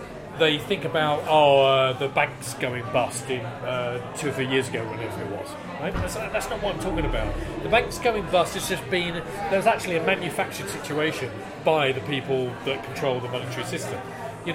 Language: English